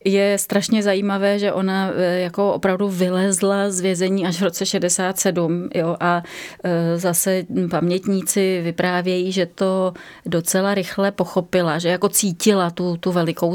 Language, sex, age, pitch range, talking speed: Czech, female, 30-49, 170-190 Hz, 135 wpm